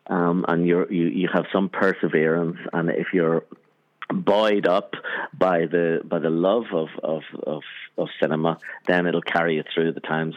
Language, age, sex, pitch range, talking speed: English, 50-69, male, 80-95 Hz, 175 wpm